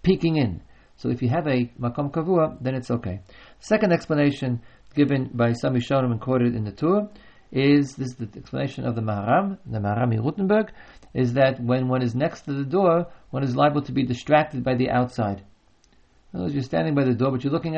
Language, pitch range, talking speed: English, 120-150 Hz, 215 wpm